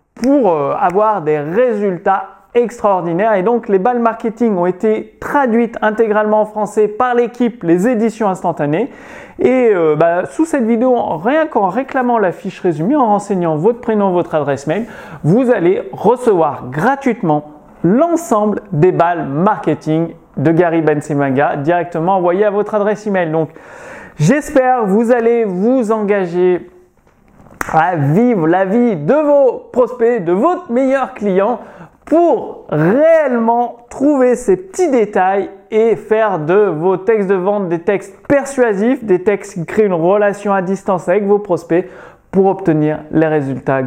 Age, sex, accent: 30-49, male, French